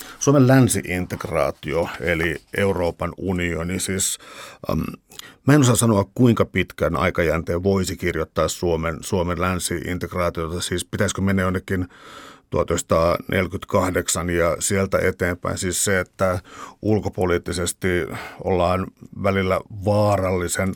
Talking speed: 100 wpm